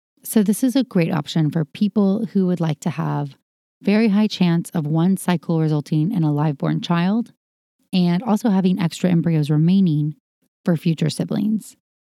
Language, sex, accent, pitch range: English, female, American, 165-205 Hz